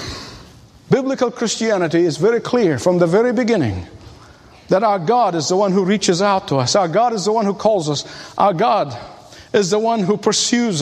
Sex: male